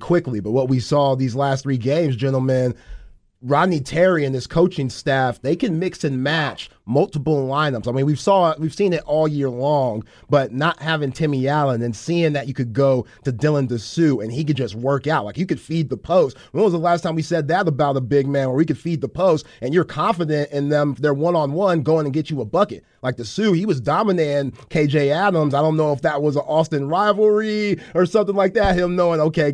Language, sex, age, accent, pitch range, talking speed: English, male, 30-49, American, 135-160 Hz, 230 wpm